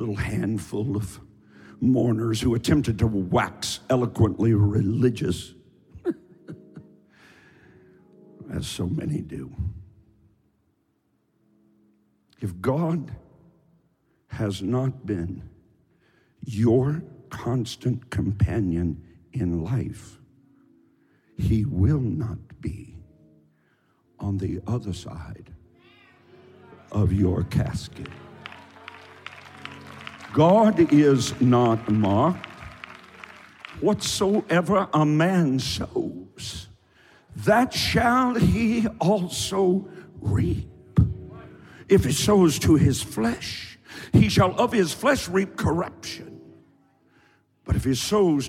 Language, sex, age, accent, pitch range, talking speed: English, male, 60-79, American, 100-145 Hz, 80 wpm